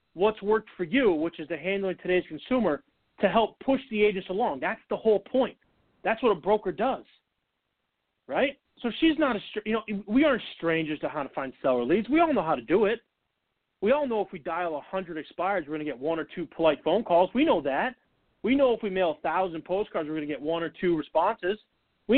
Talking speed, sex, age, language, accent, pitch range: 230 wpm, male, 30-49, English, American, 160-220 Hz